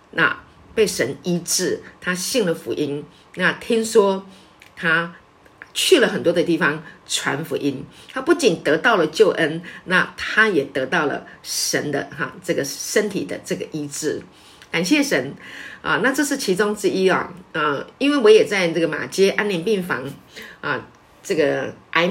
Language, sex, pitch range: Chinese, female, 160-205 Hz